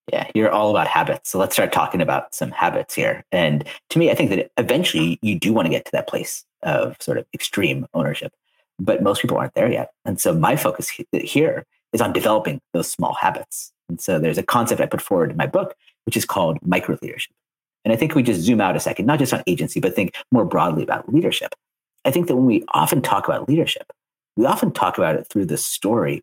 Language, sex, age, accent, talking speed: English, male, 40-59, American, 230 wpm